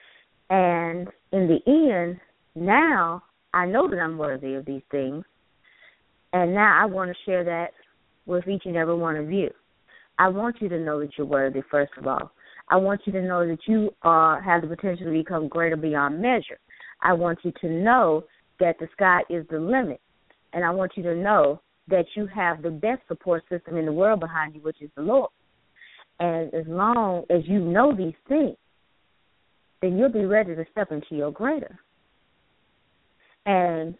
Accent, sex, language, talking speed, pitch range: American, female, English, 185 wpm, 155-195 Hz